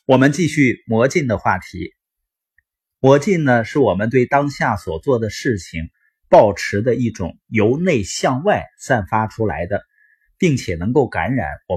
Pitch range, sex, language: 100-155 Hz, male, Chinese